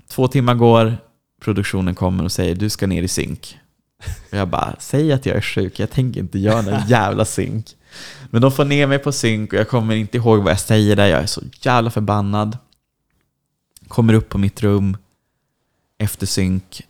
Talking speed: 195 wpm